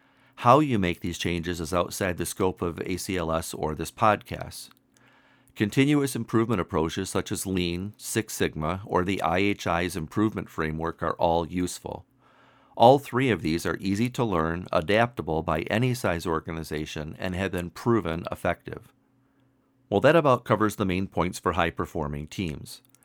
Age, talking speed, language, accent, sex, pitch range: 50-69, 150 wpm, English, American, male, 85-110 Hz